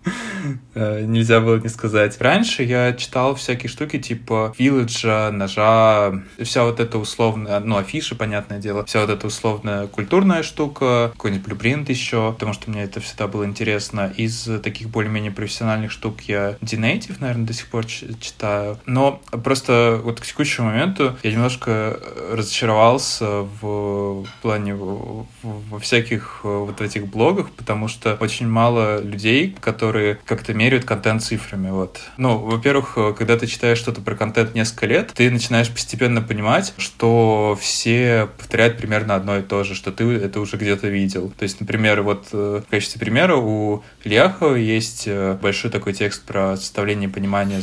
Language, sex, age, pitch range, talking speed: Russian, male, 20-39, 105-115 Hz, 155 wpm